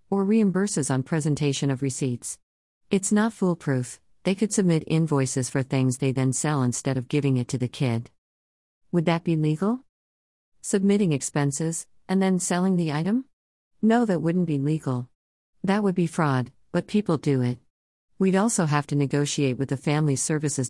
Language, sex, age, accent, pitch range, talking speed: English, female, 50-69, American, 130-185 Hz, 170 wpm